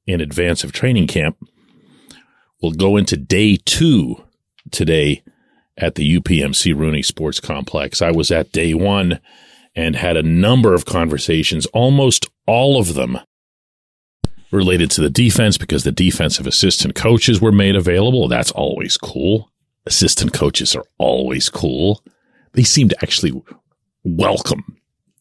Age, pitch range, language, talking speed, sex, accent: 40-59, 90-130 Hz, English, 135 wpm, male, American